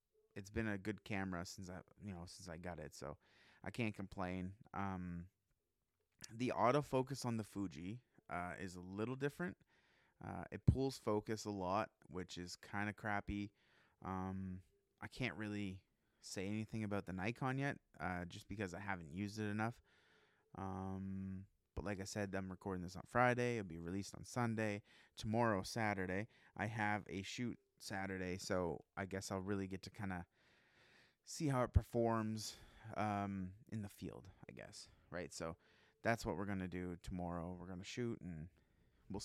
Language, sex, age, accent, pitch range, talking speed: English, male, 20-39, American, 95-110 Hz, 170 wpm